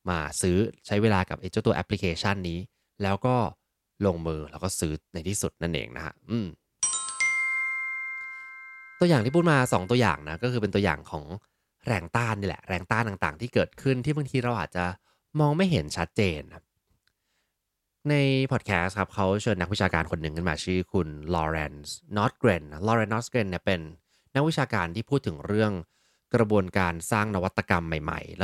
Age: 20-39